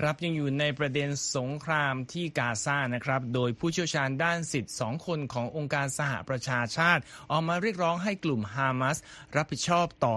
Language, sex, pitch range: Thai, male, 115-150 Hz